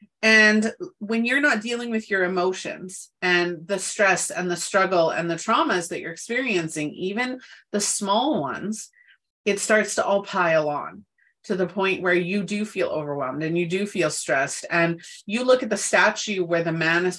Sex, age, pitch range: female, 30-49, 170-220 Hz